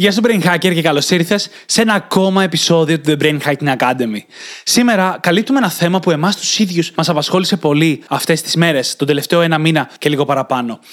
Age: 20-39